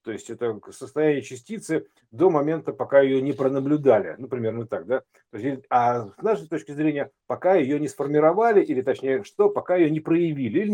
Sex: male